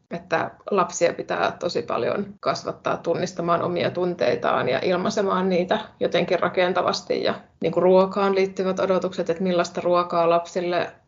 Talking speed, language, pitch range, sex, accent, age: 130 wpm, Finnish, 170-190 Hz, female, native, 20-39